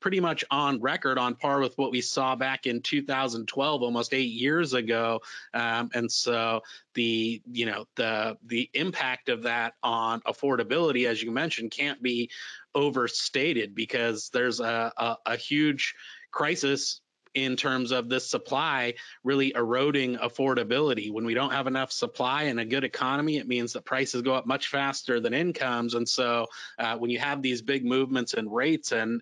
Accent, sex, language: American, male, English